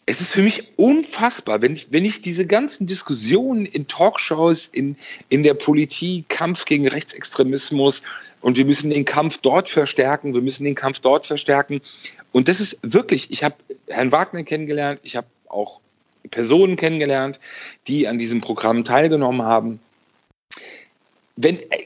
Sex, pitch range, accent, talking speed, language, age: male, 125-170 Hz, German, 150 wpm, German, 40-59